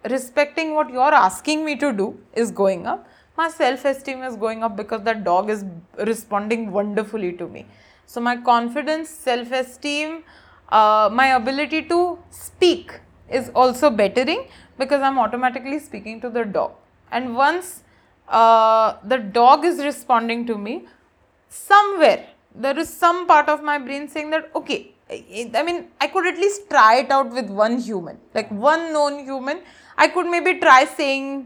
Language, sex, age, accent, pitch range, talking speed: English, female, 20-39, Indian, 225-305 Hz, 155 wpm